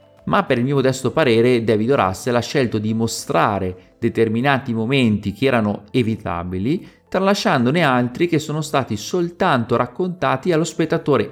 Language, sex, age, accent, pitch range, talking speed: Italian, male, 30-49, native, 100-125 Hz, 140 wpm